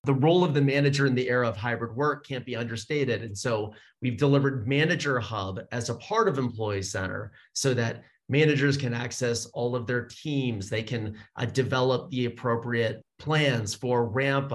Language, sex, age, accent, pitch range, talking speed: English, male, 30-49, American, 115-140 Hz, 180 wpm